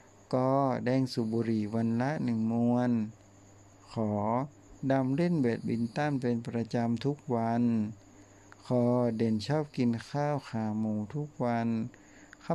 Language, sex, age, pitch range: Thai, male, 60-79, 105-140 Hz